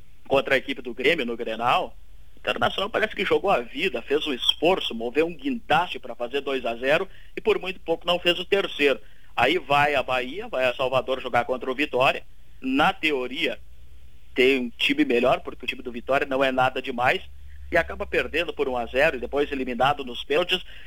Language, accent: Portuguese, Brazilian